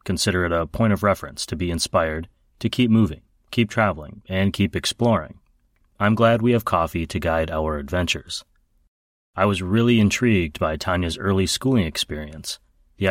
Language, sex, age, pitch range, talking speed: English, male, 30-49, 85-105 Hz, 165 wpm